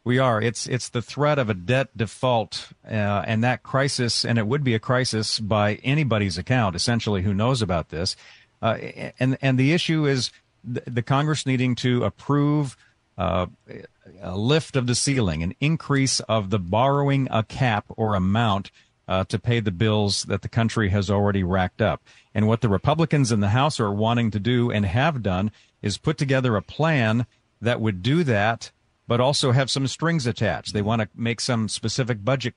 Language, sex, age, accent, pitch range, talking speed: English, male, 50-69, American, 105-130 Hz, 190 wpm